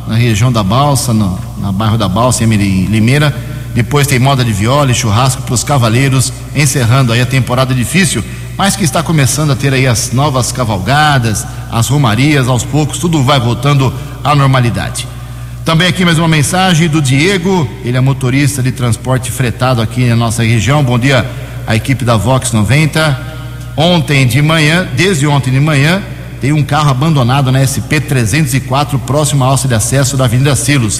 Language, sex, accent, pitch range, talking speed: Portuguese, male, Brazilian, 120-145 Hz, 170 wpm